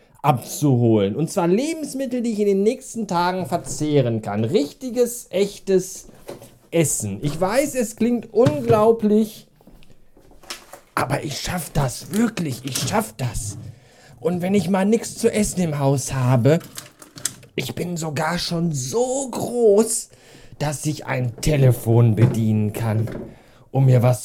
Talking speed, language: 130 wpm, German